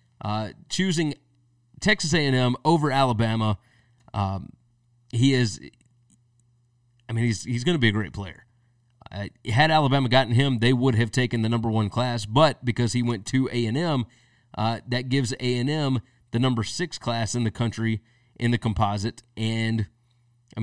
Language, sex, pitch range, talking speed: English, male, 120-155 Hz, 155 wpm